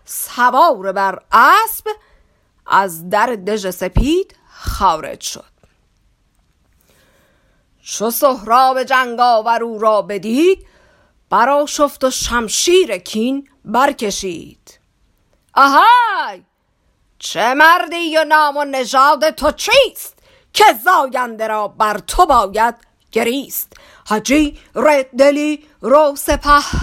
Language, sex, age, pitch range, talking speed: Persian, female, 50-69, 215-290 Hz, 95 wpm